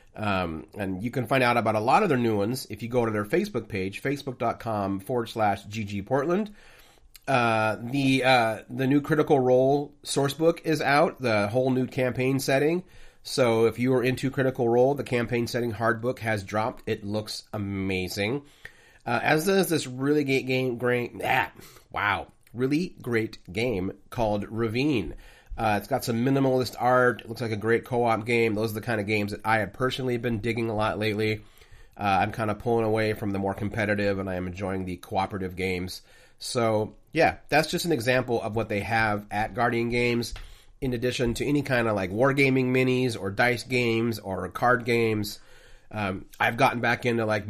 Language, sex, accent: English, male, American